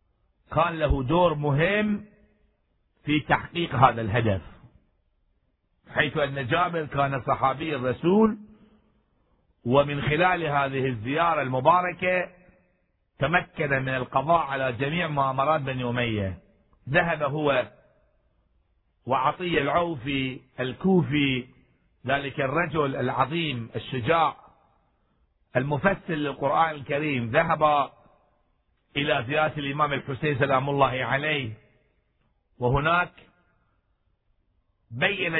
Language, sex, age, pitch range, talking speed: Arabic, male, 50-69, 125-165 Hz, 85 wpm